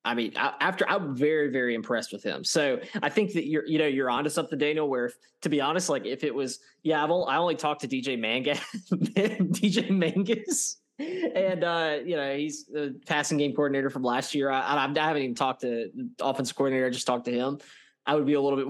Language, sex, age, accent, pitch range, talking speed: English, male, 20-39, American, 120-150 Hz, 235 wpm